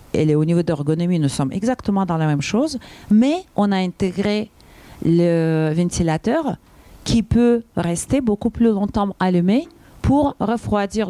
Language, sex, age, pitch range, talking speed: French, female, 40-59, 160-215 Hz, 145 wpm